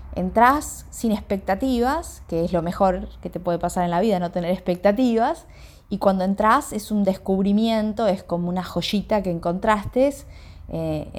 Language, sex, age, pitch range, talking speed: Spanish, female, 20-39, 160-215 Hz, 160 wpm